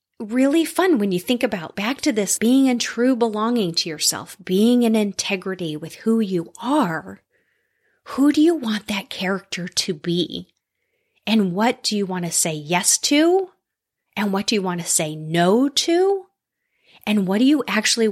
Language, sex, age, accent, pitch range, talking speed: English, female, 30-49, American, 175-255 Hz, 175 wpm